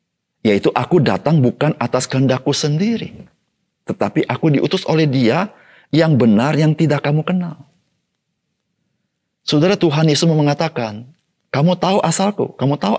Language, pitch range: Indonesian, 125-175 Hz